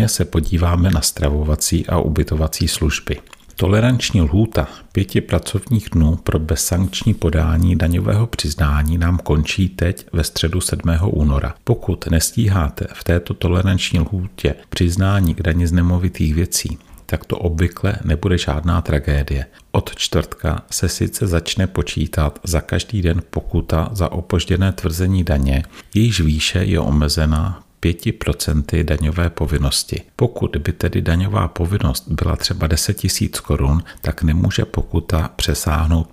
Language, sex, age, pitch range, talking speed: Czech, male, 40-59, 80-95 Hz, 130 wpm